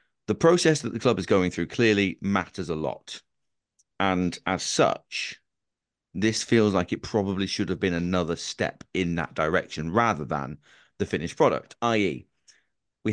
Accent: British